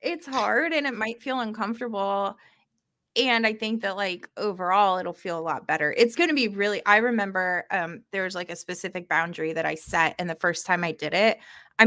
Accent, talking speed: American, 210 wpm